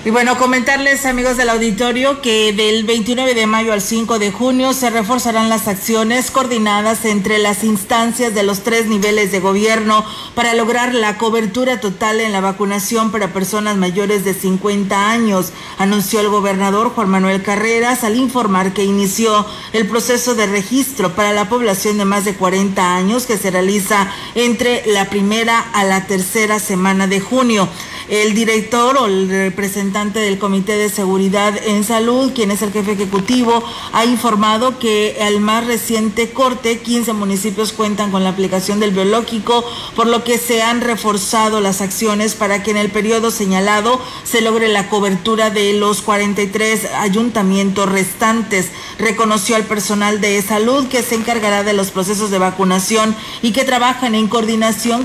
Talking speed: 160 wpm